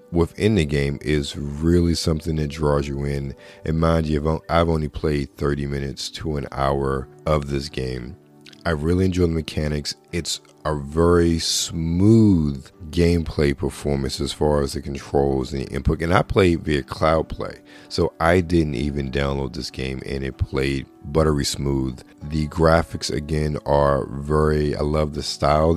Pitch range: 70-85 Hz